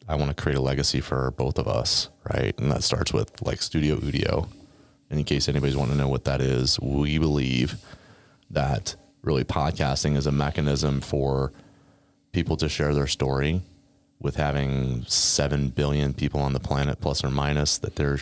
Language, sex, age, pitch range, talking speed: English, male, 30-49, 70-80 Hz, 180 wpm